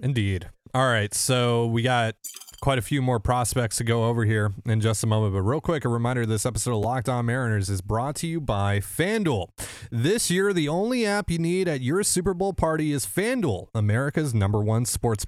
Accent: American